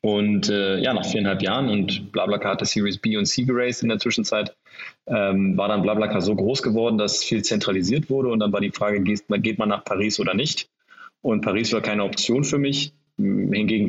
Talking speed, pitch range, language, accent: 205 wpm, 100-120 Hz, German, German